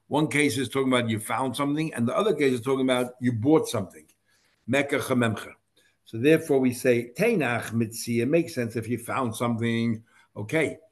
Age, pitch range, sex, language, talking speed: 60-79, 115-135 Hz, male, English, 175 wpm